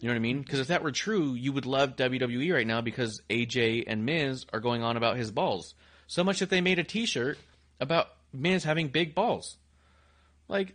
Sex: male